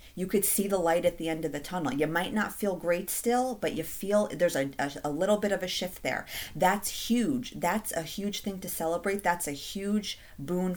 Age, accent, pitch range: 30-49, American, 160-200 Hz